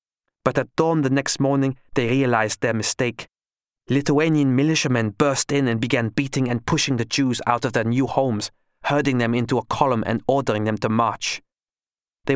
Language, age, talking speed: English, 30-49, 180 wpm